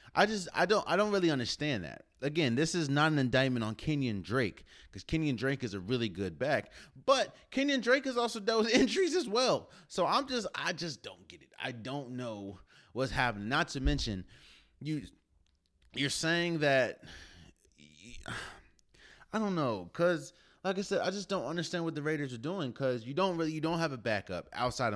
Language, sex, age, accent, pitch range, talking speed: English, male, 30-49, American, 110-155 Hz, 200 wpm